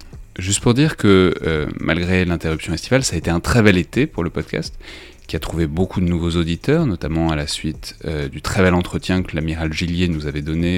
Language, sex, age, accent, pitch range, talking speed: French, male, 30-49, French, 80-95 Hz, 225 wpm